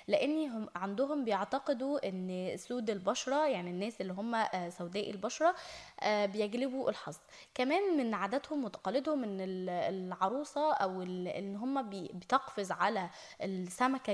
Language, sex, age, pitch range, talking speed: Arabic, female, 10-29, 195-265 Hz, 110 wpm